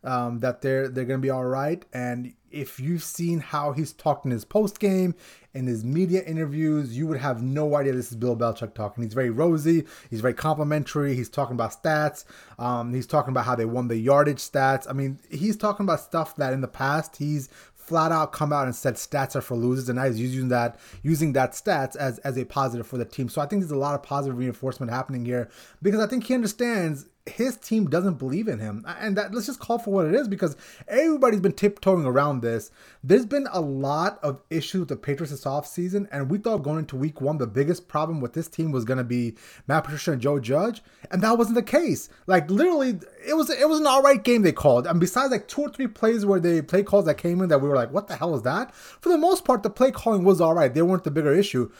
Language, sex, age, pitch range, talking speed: English, male, 30-49, 130-200 Hz, 245 wpm